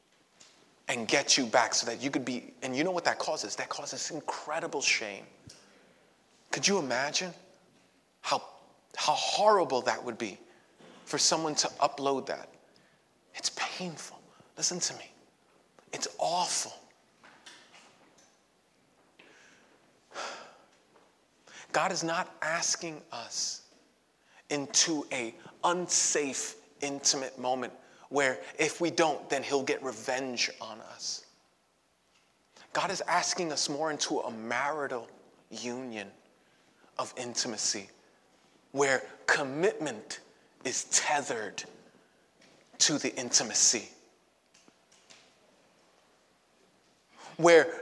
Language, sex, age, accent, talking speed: English, male, 30-49, American, 100 wpm